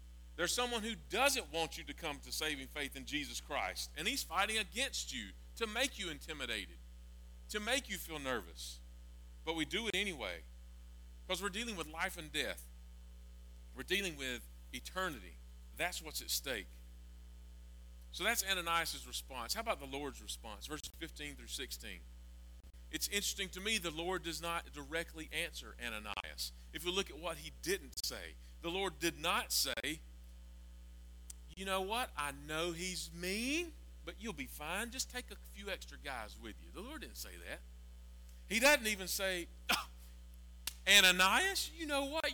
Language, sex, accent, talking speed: English, male, American, 165 wpm